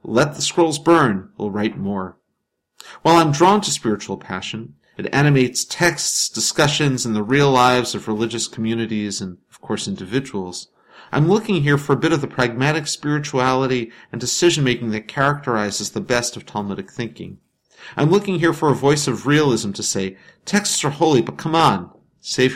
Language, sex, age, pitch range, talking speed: English, male, 50-69, 110-145 Hz, 170 wpm